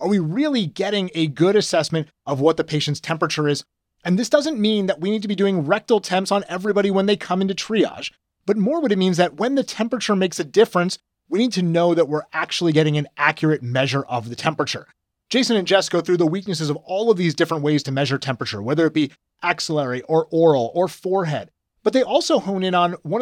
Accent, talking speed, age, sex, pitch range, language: American, 230 wpm, 30-49, male, 160-210 Hz, English